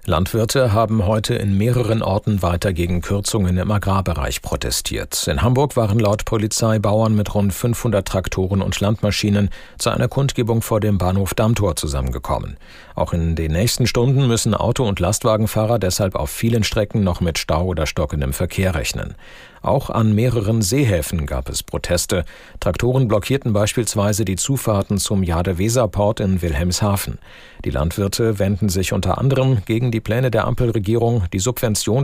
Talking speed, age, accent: 150 wpm, 50-69, German